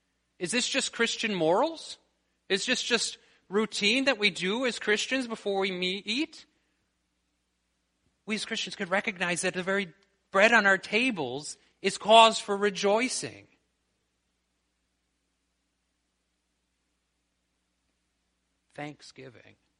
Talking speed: 105 wpm